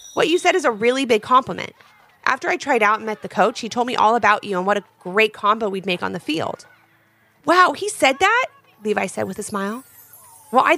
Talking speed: 240 wpm